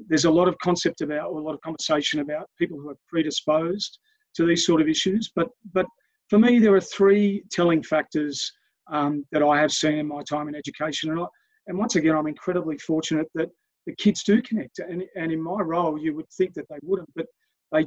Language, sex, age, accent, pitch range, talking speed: English, male, 40-59, Australian, 155-185 Hz, 220 wpm